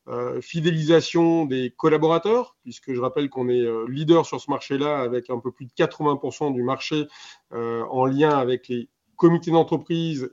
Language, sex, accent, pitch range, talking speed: French, male, French, 125-150 Hz, 170 wpm